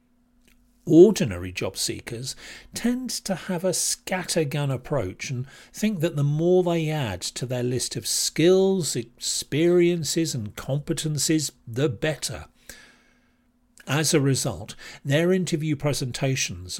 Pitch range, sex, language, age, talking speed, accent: 125-165 Hz, male, English, 50-69, 115 wpm, British